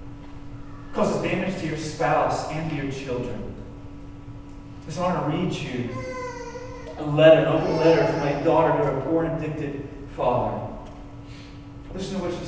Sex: male